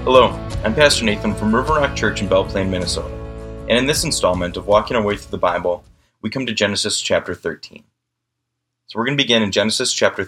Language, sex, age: English, male, 30-49